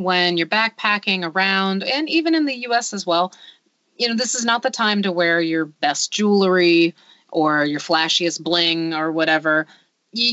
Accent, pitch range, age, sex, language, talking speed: American, 160-200 Hz, 30-49, female, English, 175 wpm